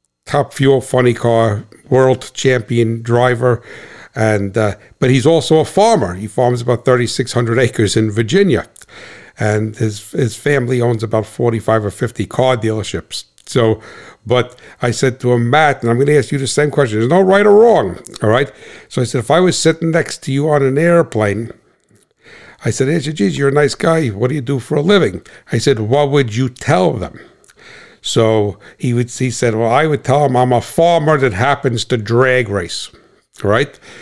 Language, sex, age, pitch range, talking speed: English, male, 60-79, 110-140 Hz, 190 wpm